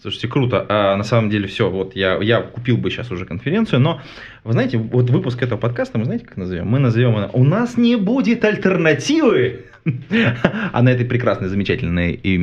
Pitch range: 100-150 Hz